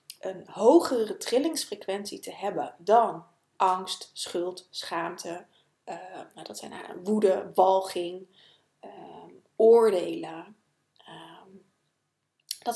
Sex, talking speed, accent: female, 70 wpm, Dutch